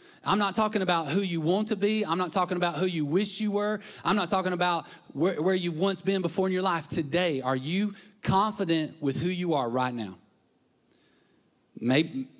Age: 30-49